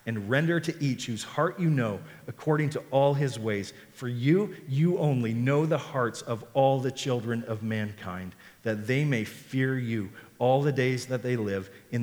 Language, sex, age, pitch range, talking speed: English, male, 40-59, 120-150 Hz, 190 wpm